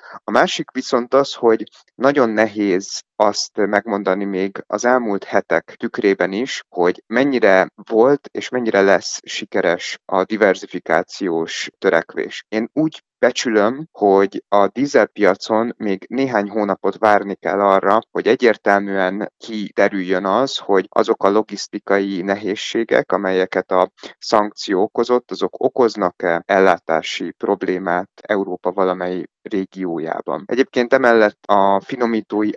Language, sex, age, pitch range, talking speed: Hungarian, male, 30-49, 95-105 Hz, 110 wpm